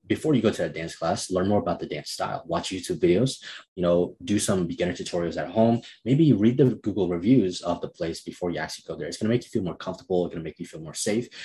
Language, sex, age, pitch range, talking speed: English, male, 20-39, 85-115 Hz, 280 wpm